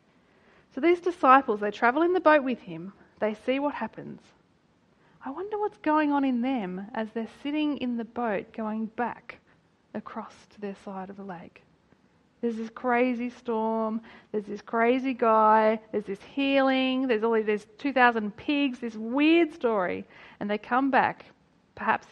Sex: female